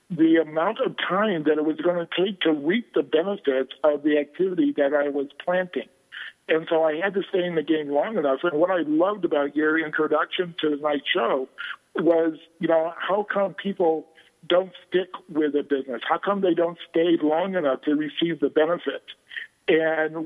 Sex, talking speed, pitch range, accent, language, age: male, 195 wpm, 155-180 Hz, American, English, 50-69